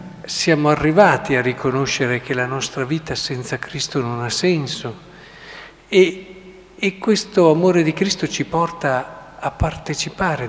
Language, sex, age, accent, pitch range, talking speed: Italian, male, 50-69, native, 125-160 Hz, 130 wpm